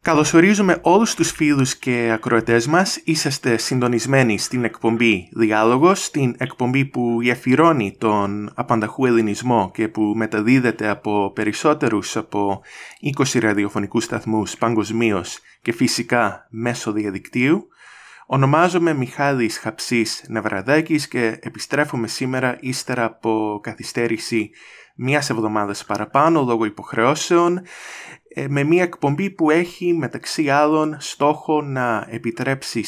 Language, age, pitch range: English, 20-39, 110-140 Hz